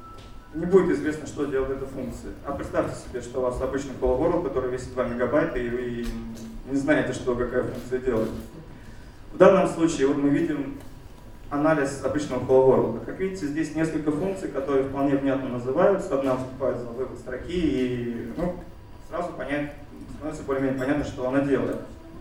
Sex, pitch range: male, 125-150 Hz